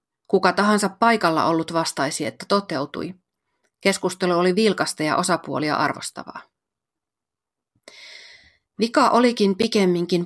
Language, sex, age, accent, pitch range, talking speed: Finnish, female, 30-49, native, 160-200 Hz, 95 wpm